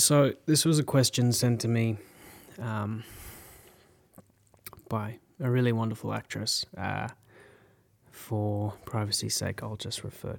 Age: 20-39